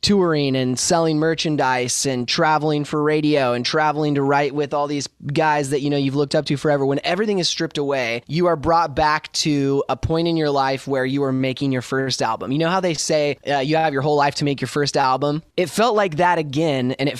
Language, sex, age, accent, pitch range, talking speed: English, male, 20-39, American, 135-160 Hz, 250 wpm